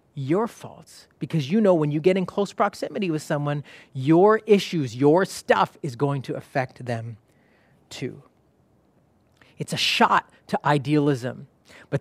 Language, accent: English, American